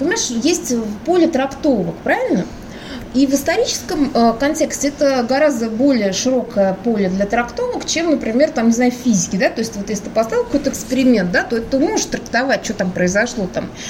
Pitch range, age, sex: 225-295 Hz, 20-39, female